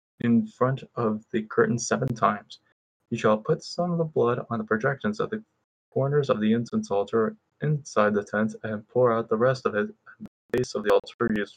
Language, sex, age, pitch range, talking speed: English, male, 20-39, 105-125 Hz, 215 wpm